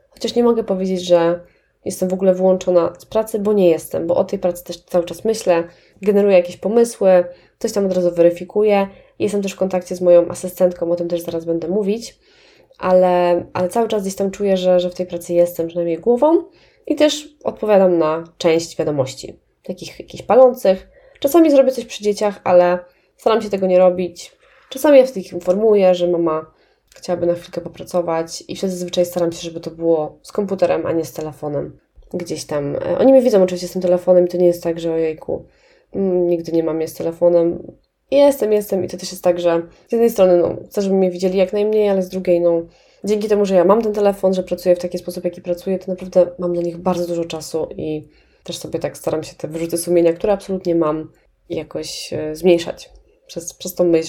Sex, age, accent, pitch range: female, 20-39, native, 170-200 Hz